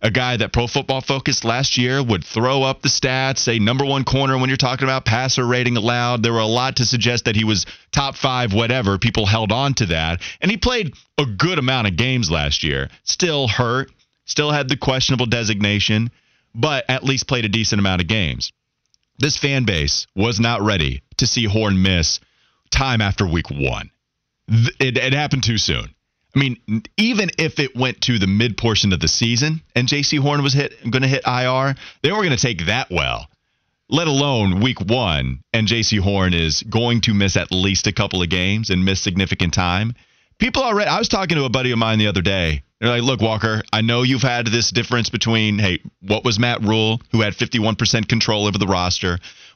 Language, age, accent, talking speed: English, 30-49, American, 205 wpm